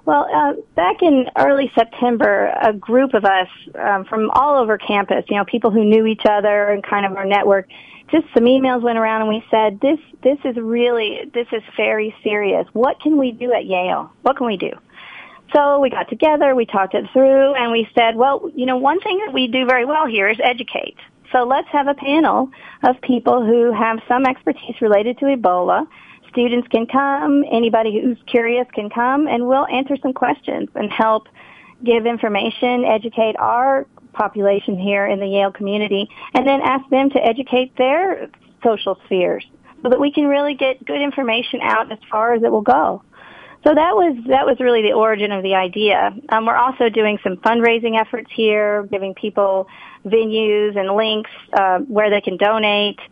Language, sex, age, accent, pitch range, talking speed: English, female, 40-59, American, 215-265 Hz, 190 wpm